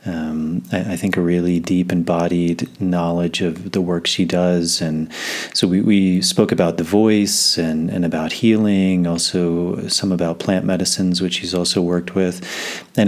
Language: English